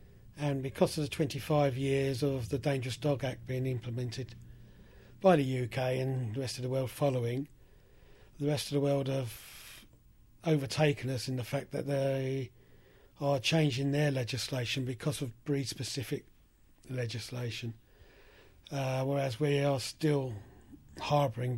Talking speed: 140 wpm